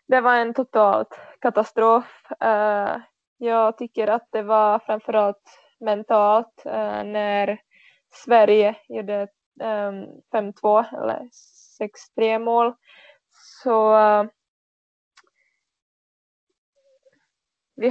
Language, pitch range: Swedish, 210-235 Hz